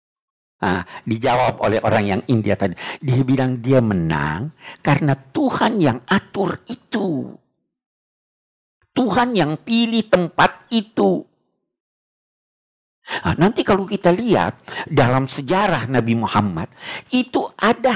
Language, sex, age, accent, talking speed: Indonesian, male, 50-69, native, 105 wpm